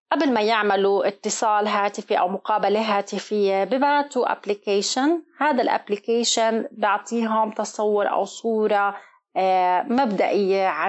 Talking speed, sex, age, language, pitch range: 95 wpm, female, 30-49, Arabic, 195-245 Hz